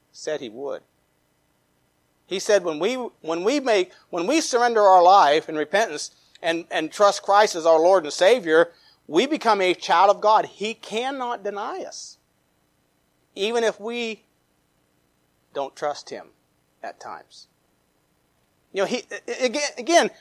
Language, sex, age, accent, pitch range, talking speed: English, male, 40-59, American, 145-225 Hz, 145 wpm